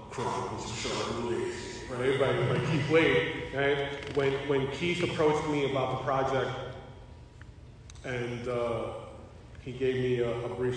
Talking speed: 125 wpm